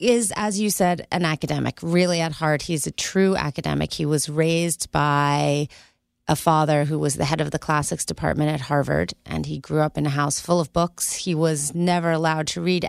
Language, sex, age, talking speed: English, female, 30-49, 210 wpm